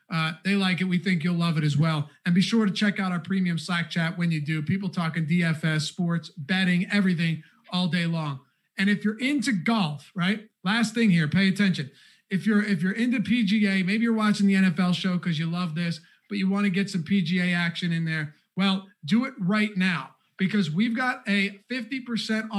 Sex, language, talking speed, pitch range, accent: male, English, 210 wpm, 170-210 Hz, American